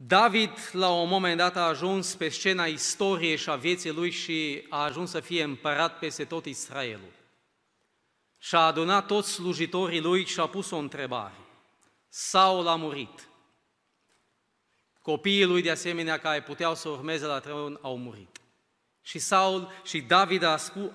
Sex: male